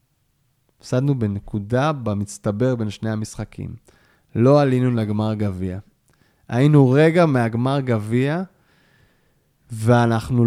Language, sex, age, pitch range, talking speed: Hebrew, male, 20-39, 115-150 Hz, 85 wpm